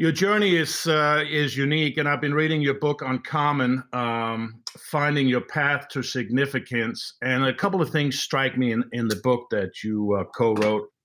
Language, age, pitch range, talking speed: English, 50-69, 115-135 Hz, 185 wpm